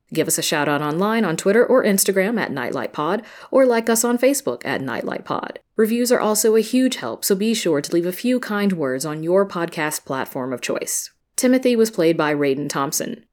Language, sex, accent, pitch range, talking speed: English, female, American, 150-195 Hz, 205 wpm